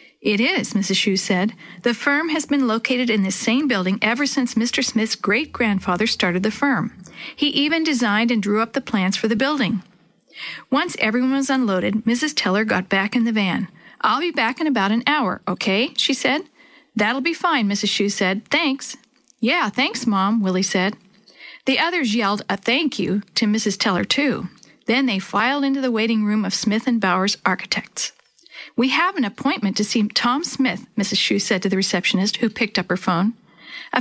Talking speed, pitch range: 190 wpm, 200-260 Hz